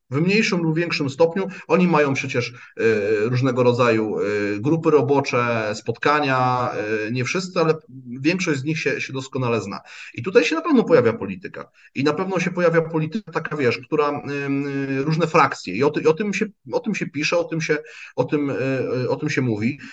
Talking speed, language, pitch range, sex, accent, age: 150 wpm, Polish, 125-150 Hz, male, native, 30-49